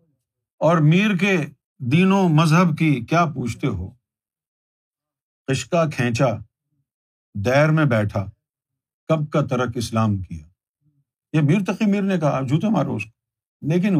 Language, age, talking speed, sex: Urdu, 50-69, 125 wpm, male